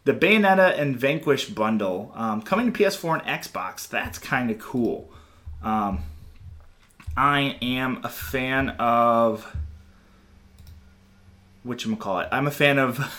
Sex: male